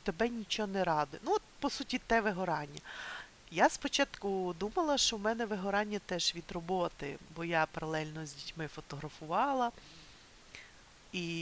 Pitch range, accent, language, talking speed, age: 160-220 Hz, native, Ukrainian, 140 wpm, 30-49